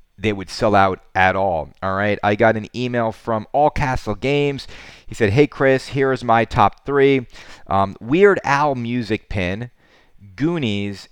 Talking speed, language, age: 160 wpm, English, 30-49